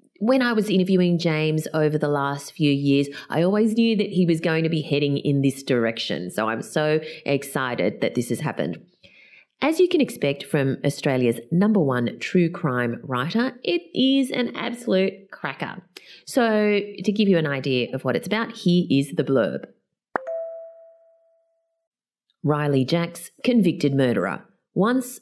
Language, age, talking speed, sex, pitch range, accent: English, 30-49, 155 wpm, female, 130-200 Hz, Australian